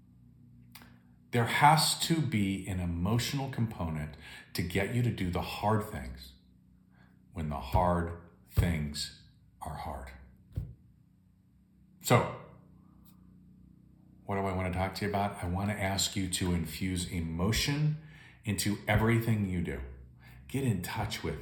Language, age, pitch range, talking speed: English, 40-59, 80-110 Hz, 130 wpm